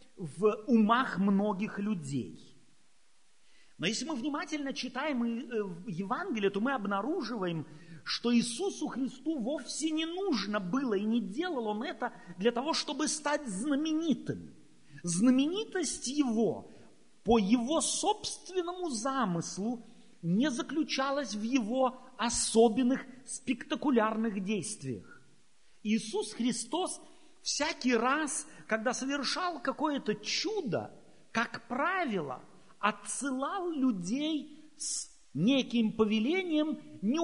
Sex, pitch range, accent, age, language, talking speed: male, 220-300 Hz, native, 40-59, Russian, 95 wpm